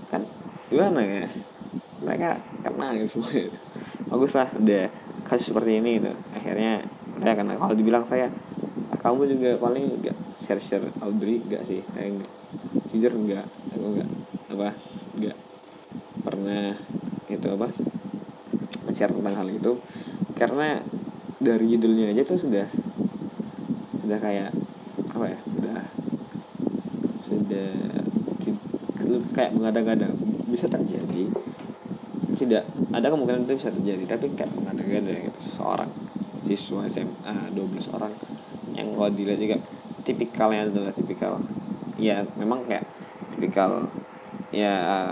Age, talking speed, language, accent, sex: 20-39, 120 wpm, Indonesian, native, male